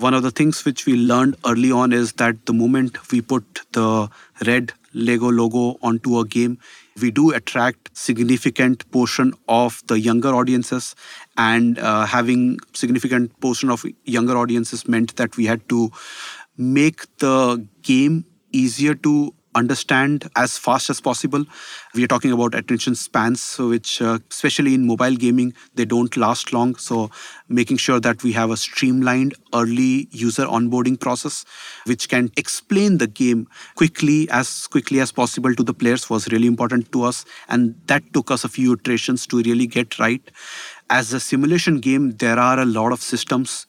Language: English